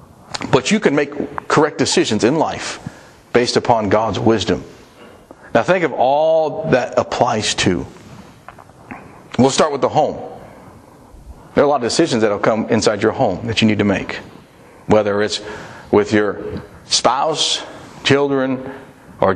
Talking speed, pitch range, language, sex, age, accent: 160 wpm, 120-155 Hz, English, male, 40-59, American